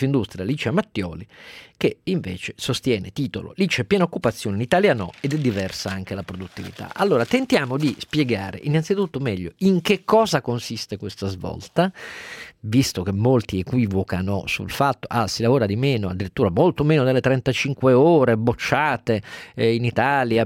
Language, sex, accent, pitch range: Italian, male, native, 100-140 Hz